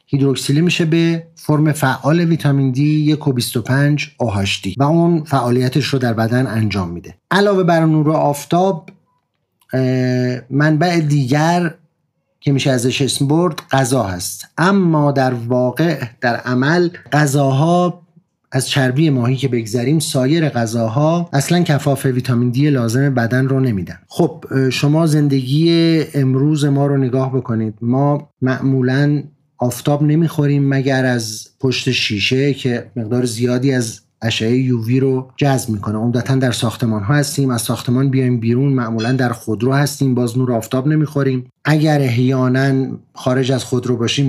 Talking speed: 140 wpm